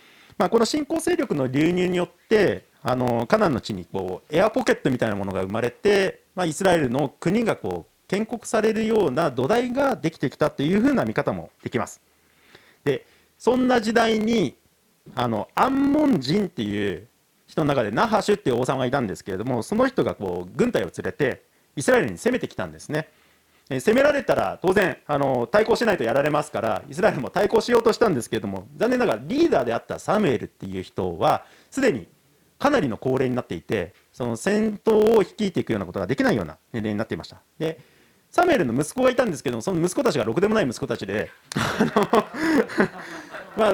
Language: Japanese